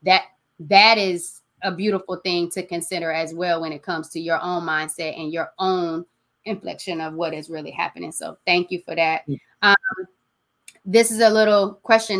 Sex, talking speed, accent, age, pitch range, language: female, 180 wpm, American, 20-39, 160-180 Hz, English